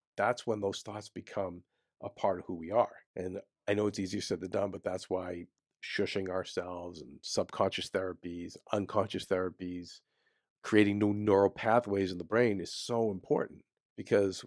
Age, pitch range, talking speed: 50-69, 90-110 Hz, 165 wpm